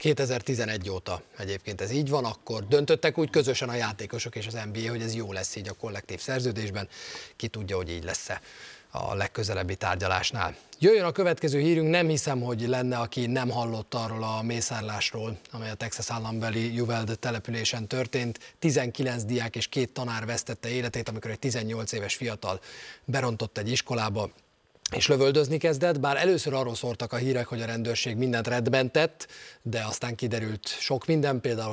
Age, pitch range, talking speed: 30-49, 115-140 Hz, 165 wpm